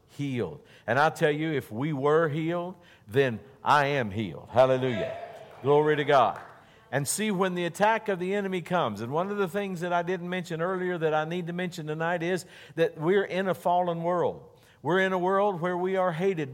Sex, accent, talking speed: male, American, 205 wpm